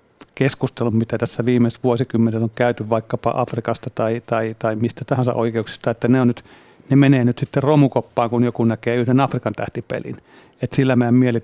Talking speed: 180 wpm